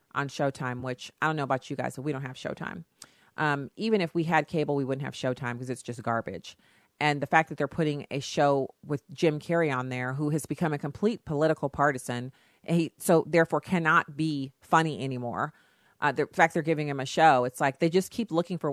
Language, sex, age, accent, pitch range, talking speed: English, female, 40-59, American, 145-185 Hz, 220 wpm